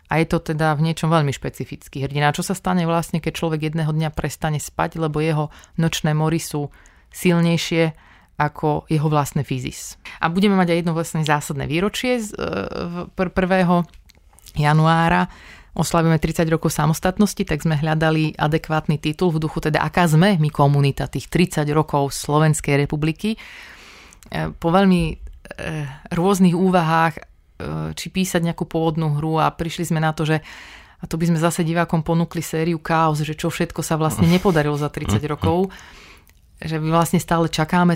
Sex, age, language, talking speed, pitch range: female, 30-49, Slovak, 155 wpm, 155-170 Hz